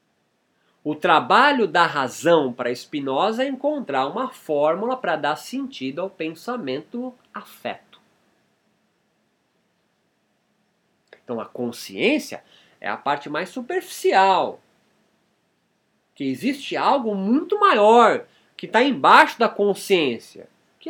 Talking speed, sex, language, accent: 100 wpm, male, Portuguese, Brazilian